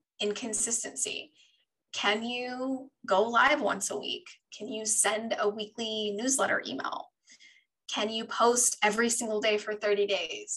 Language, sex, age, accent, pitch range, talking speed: English, female, 20-39, American, 205-245 Hz, 135 wpm